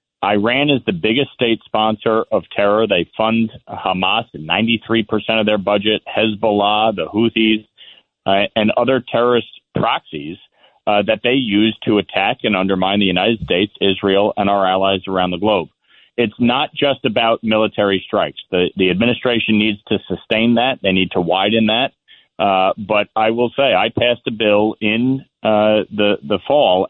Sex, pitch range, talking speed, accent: male, 100-120 Hz, 165 wpm, American